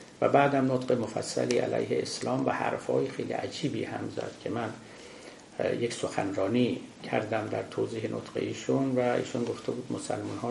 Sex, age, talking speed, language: male, 50-69, 155 wpm, Persian